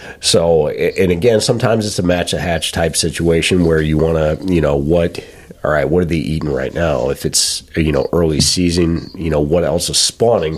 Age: 30-49